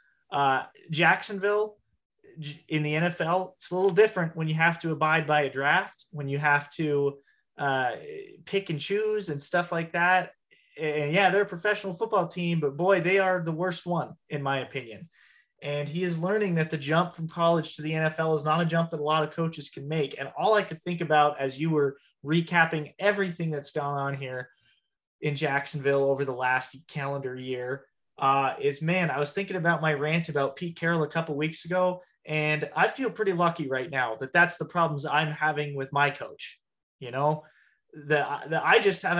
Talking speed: 200 wpm